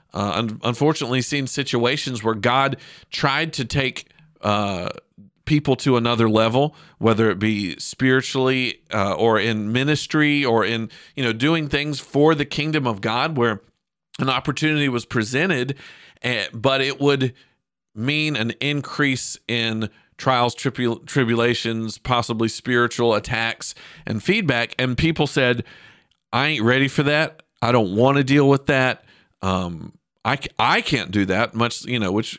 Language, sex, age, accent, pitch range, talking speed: English, male, 40-59, American, 115-145 Hz, 150 wpm